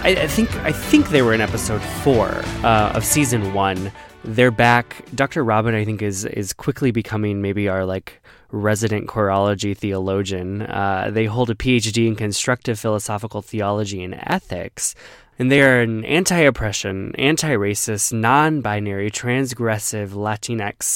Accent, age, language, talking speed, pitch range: American, 20-39, English, 140 wpm, 100-125 Hz